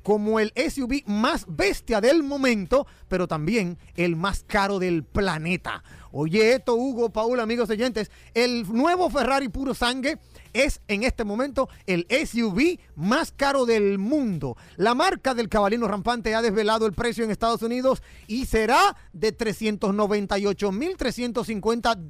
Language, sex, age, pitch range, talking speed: Spanish, male, 40-59, 200-245 Hz, 140 wpm